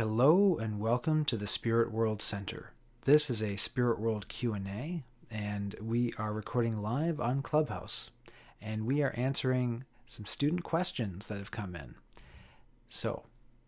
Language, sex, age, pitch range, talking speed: English, male, 40-59, 110-130 Hz, 145 wpm